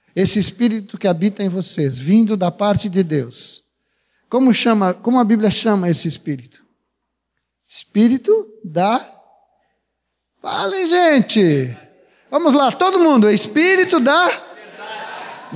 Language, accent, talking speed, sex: Portuguese, Brazilian, 115 wpm, male